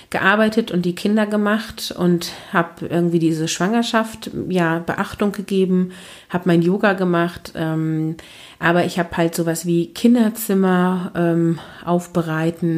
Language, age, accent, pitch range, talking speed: German, 30-49, German, 170-200 Hz, 125 wpm